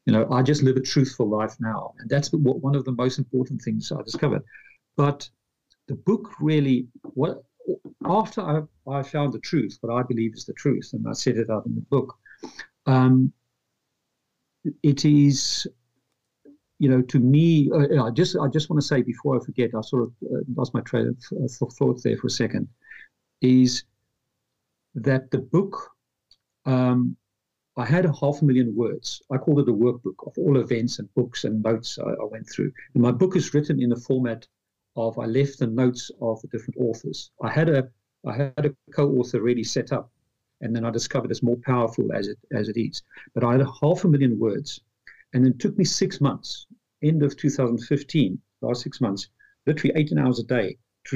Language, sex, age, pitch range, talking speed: English, male, 50-69, 120-145 Hz, 200 wpm